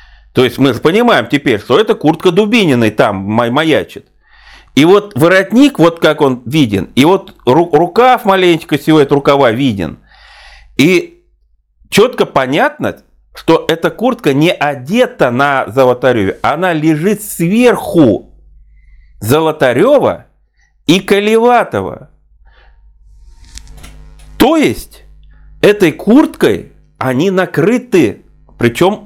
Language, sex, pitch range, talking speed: Russian, male, 125-200 Hz, 105 wpm